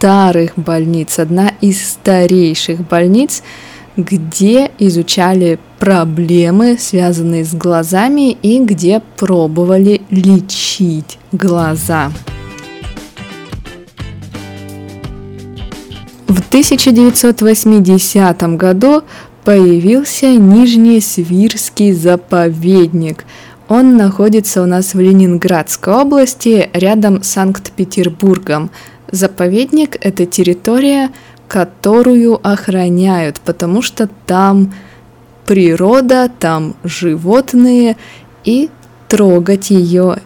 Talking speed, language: 75 wpm, Russian